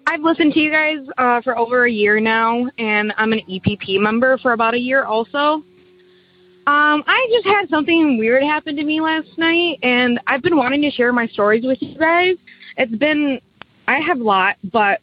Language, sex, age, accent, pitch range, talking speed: English, female, 20-39, American, 195-270 Hz, 200 wpm